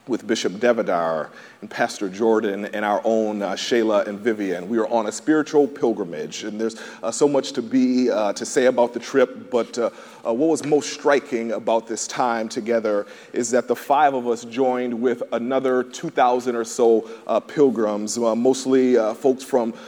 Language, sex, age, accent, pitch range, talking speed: English, male, 40-59, American, 110-130 Hz, 185 wpm